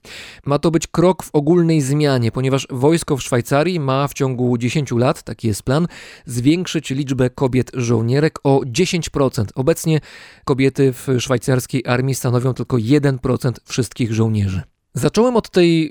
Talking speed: 145 wpm